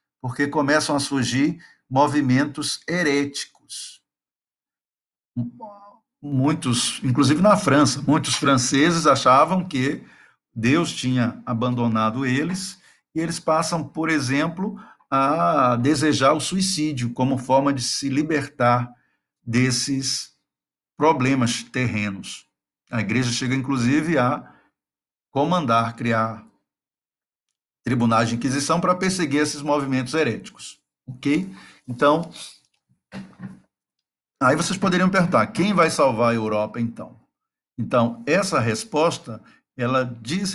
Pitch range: 120-150 Hz